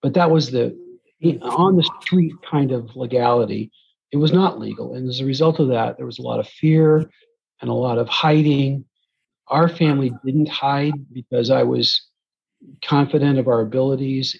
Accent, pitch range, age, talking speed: American, 125-150 Hz, 50-69, 170 wpm